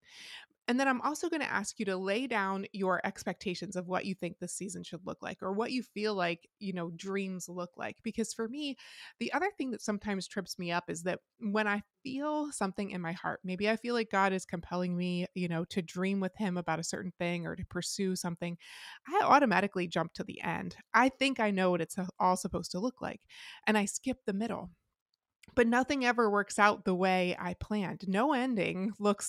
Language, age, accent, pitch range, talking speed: English, 20-39, American, 180-225 Hz, 220 wpm